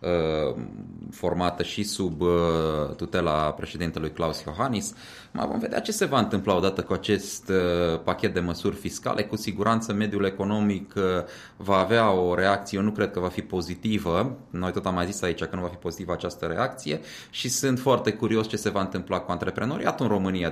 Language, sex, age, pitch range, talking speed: Romanian, male, 20-39, 90-110 Hz, 175 wpm